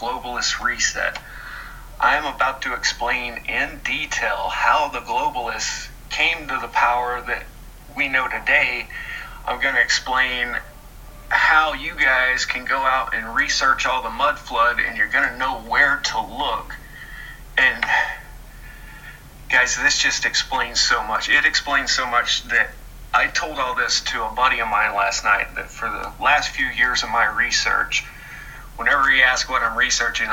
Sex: male